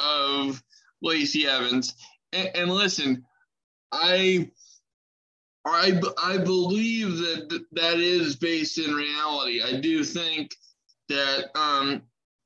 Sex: male